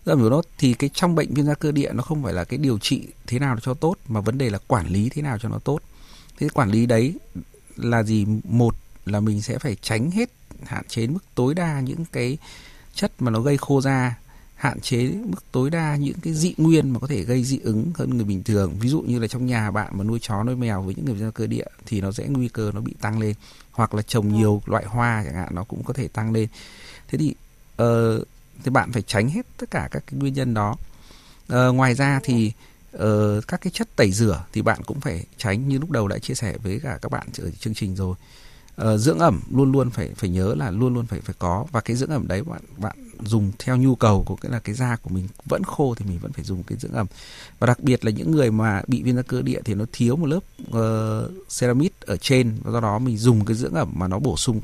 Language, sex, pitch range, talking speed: Vietnamese, male, 110-135 Hz, 260 wpm